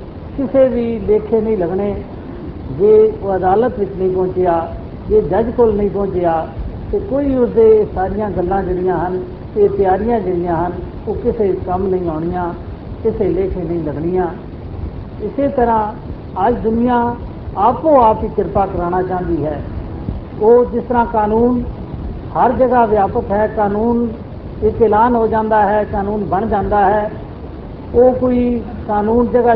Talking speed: 125 wpm